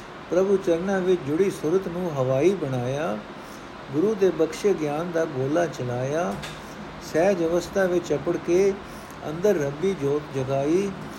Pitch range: 145-180 Hz